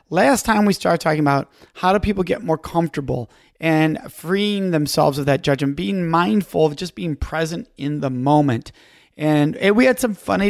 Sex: male